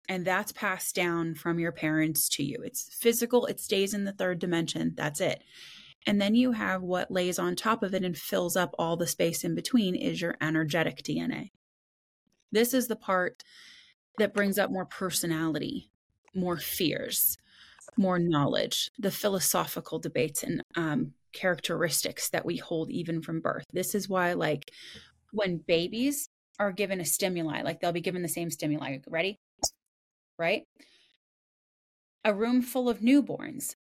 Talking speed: 160 wpm